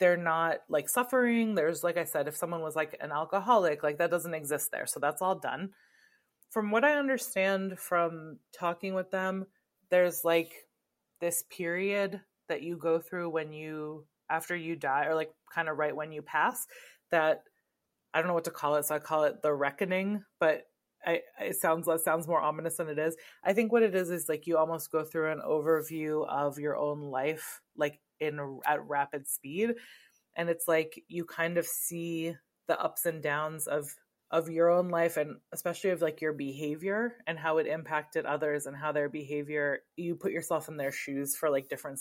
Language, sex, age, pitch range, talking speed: English, female, 20-39, 150-180 Hz, 195 wpm